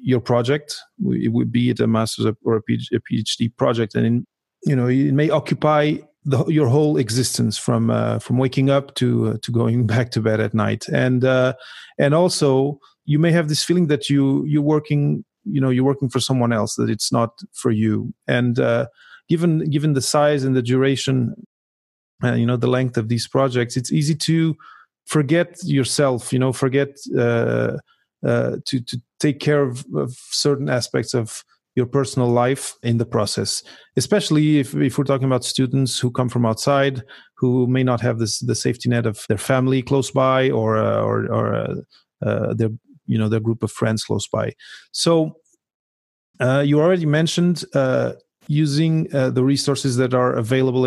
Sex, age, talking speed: male, 30-49, 185 wpm